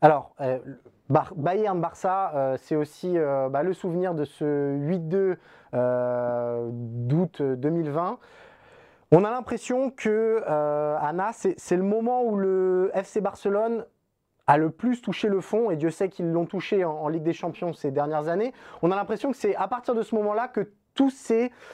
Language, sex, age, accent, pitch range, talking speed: French, male, 20-39, French, 150-205 Hz, 175 wpm